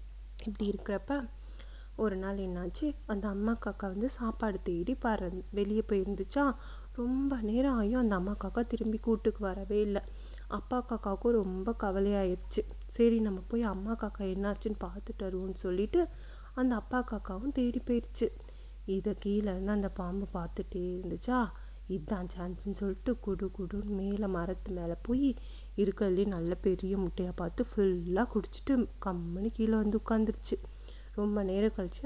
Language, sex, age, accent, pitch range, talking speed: Tamil, female, 30-49, native, 190-230 Hz, 135 wpm